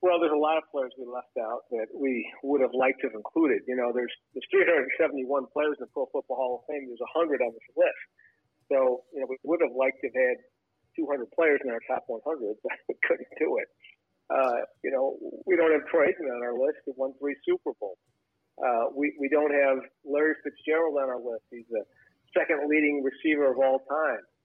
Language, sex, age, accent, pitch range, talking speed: English, male, 50-69, American, 130-160 Hz, 215 wpm